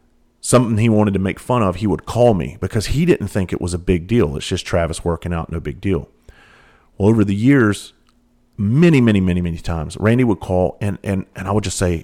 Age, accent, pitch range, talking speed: 40-59, American, 95-125 Hz, 235 wpm